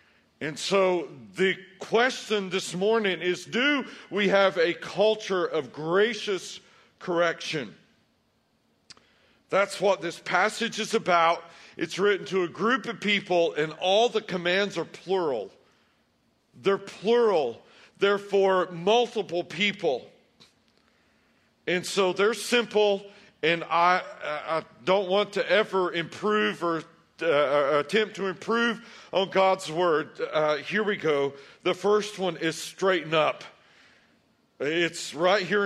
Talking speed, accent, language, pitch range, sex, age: 125 wpm, American, English, 180-220 Hz, male, 50-69